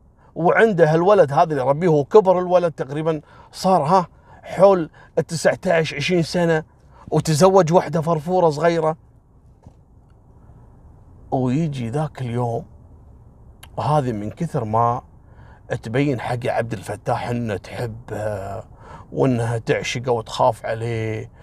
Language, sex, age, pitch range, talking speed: Arabic, male, 40-59, 120-180 Hz, 100 wpm